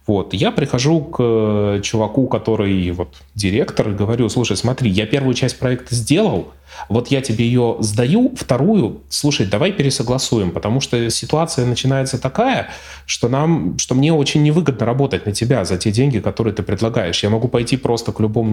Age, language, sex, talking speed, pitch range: 20-39, Russian, male, 170 wpm, 100-135 Hz